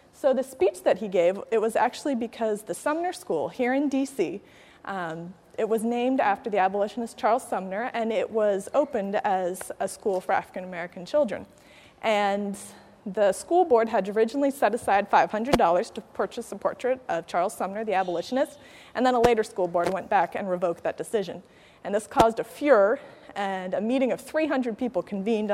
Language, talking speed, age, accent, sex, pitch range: English, 180 wpm, 30-49, American, female, 200-260 Hz